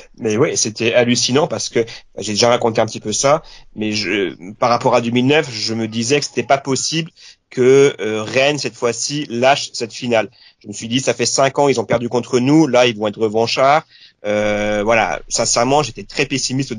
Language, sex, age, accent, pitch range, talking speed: French, male, 30-49, French, 110-130 Hz, 220 wpm